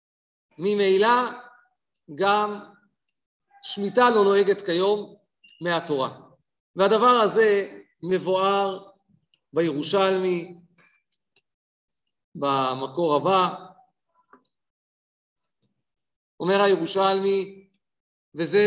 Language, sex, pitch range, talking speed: Hebrew, male, 175-210 Hz, 50 wpm